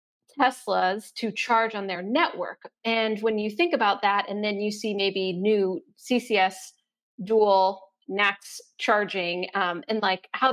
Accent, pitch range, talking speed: American, 195-245 Hz, 150 wpm